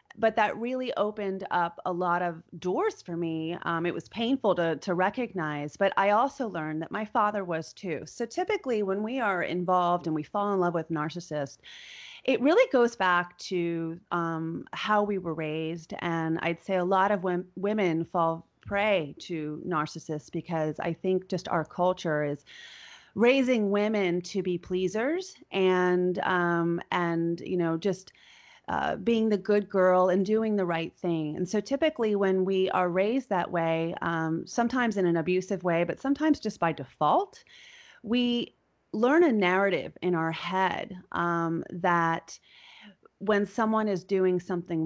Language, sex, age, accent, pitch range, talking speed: English, female, 30-49, American, 170-215 Hz, 165 wpm